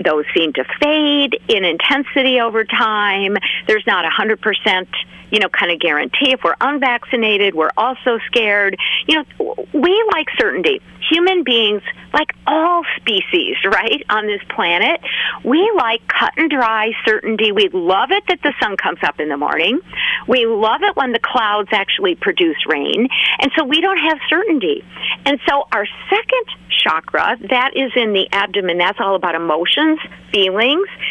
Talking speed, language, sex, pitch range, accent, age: 165 wpm, English, female, 210-315 Hz, American, 50-69